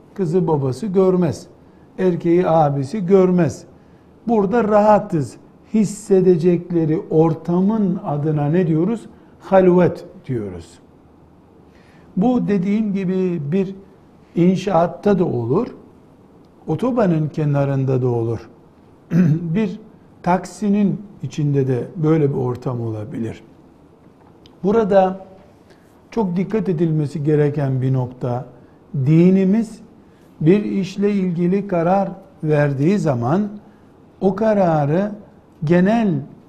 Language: Turkish